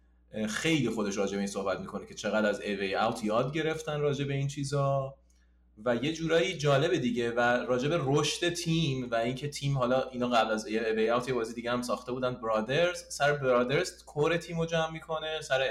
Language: Persian